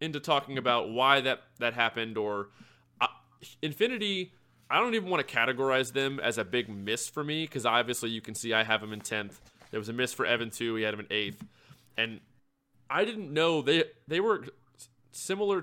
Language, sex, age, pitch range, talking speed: English, male, 20-39, 115-145 Hz, 205 wpm